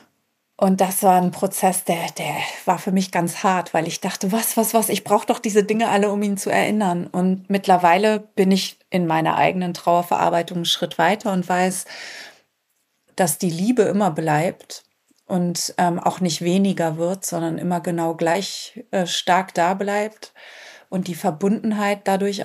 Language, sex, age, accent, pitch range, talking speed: German, female, 30-49, German, 175-200 Hz, 170 wpm